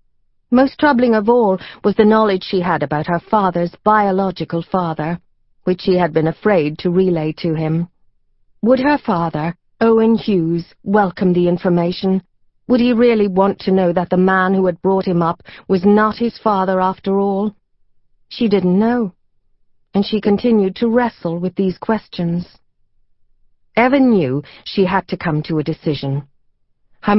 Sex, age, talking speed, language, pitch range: female, 40-59, 160 wpm, English, 170-215 Hz